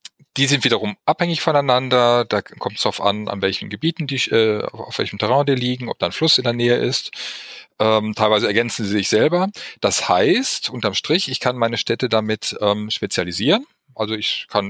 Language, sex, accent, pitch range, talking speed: German, male, German, 105-135 Hz, 195 wpm